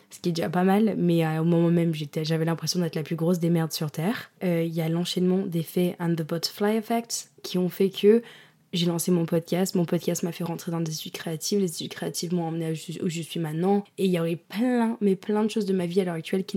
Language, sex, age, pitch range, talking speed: French, female, 20-39, 170-200 Hz, 270 wpm